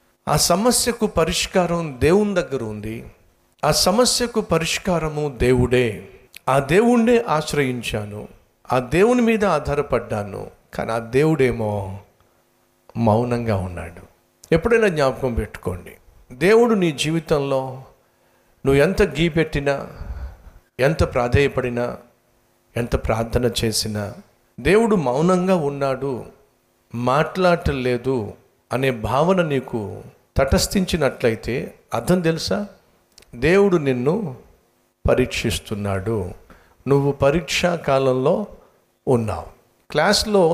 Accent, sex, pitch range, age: native, male, 120-175 Hz, 50-69